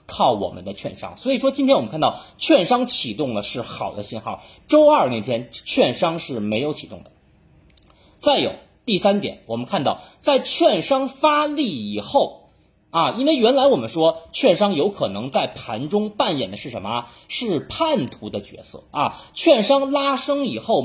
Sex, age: male, 30-49